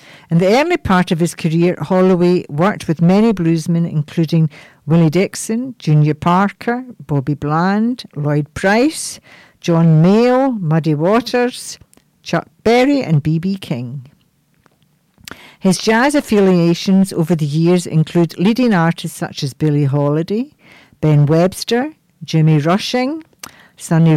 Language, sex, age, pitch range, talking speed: English, female, 60-79, 160-195 Hz, 120 wpm